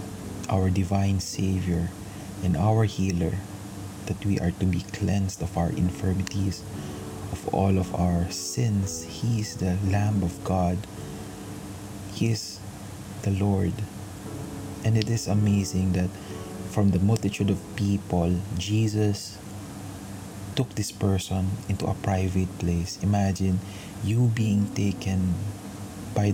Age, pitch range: 20-39, 95-100 Hz